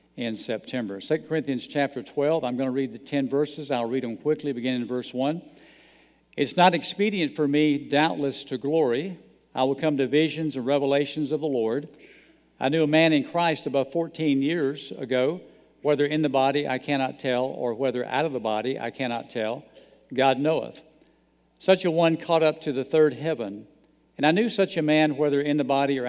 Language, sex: English, male